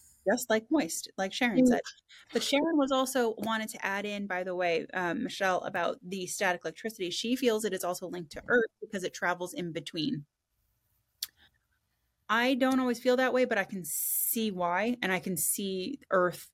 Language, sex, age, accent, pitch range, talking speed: English, female, 20-39, American, 180-255 Hz, 190 wpm